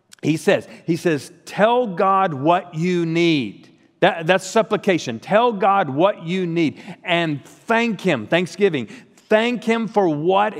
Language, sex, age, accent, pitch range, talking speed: English, male, 40-59, American, 135-190 Hz, 140 wpm